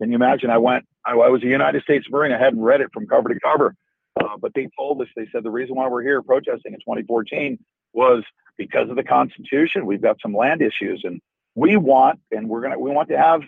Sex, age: male, 50-69